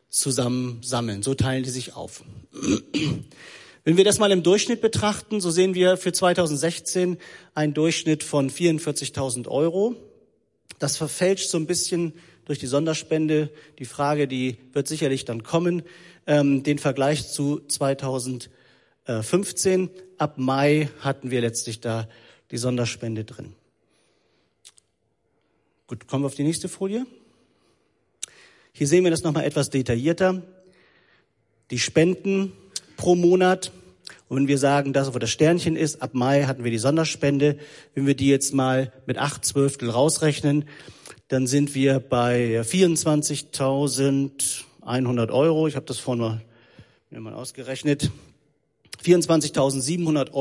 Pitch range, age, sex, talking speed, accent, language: 130-165 Hz, 40-59, male, 130 wpm, German, German